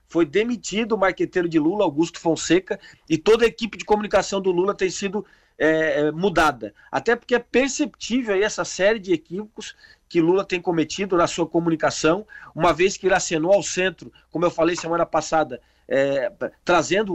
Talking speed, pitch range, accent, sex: 175 wpm, 165-215 Hz, Brazilian, male